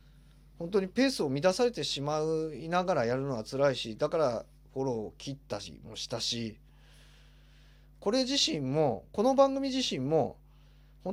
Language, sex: Japanese, male